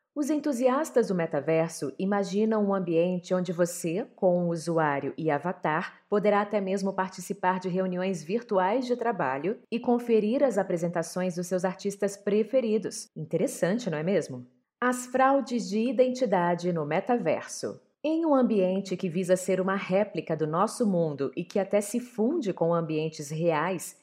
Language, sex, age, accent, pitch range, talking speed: Portuguese, female, 30-49, Brazilian, 170-215 Hz, 150 wpm